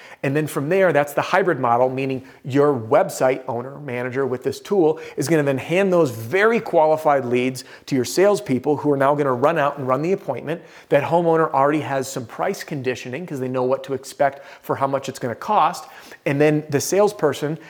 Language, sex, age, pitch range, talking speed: English, male, 40-59, 130-155 Hz, 215 wpm